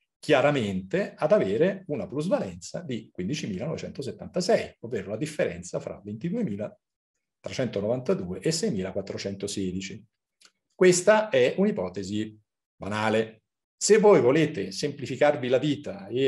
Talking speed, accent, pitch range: 90 wpm, native, 100-160 Hz